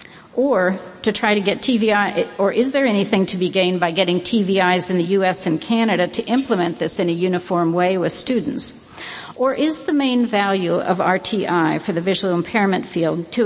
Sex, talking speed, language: female, 190 wpm, English